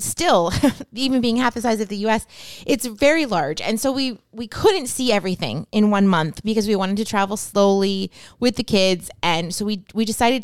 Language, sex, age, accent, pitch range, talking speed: English, female, 20-39, American, 180-225 Hz, 205 wpm